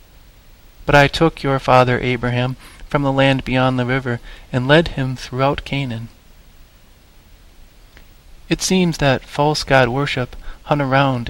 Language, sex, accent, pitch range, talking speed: English, male, American, 120-150 Hz, 135 wpm